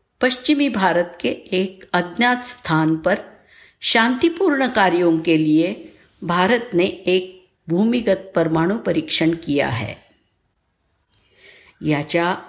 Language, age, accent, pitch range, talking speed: Marathi, 50-69, native, 165-215 Hz, 80 wpm